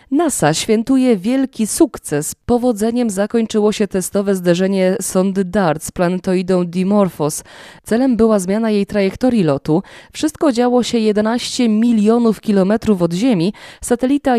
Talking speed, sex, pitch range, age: 120 wpm, female, 160-215 Hz, 20-39